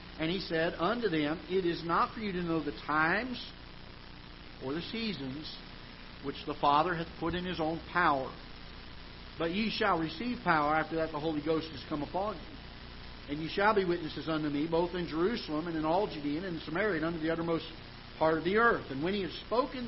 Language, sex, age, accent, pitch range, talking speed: English, male, 50-69, American, 150-210 Hz, 210 wpm